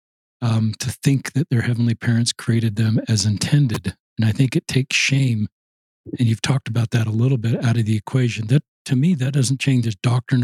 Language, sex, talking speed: English, male, 215 wpm